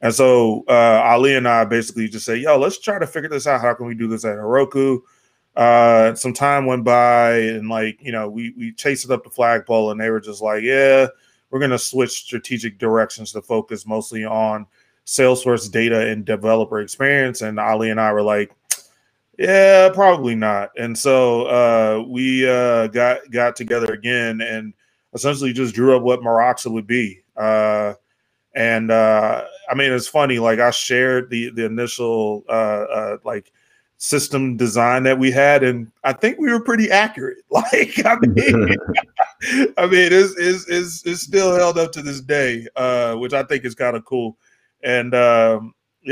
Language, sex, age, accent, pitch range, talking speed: English, male, 20-39, American, 115-130 Hz, 180 wpm